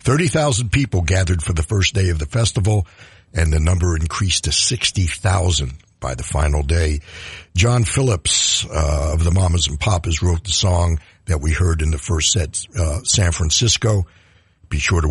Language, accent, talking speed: English, American, 175 wpm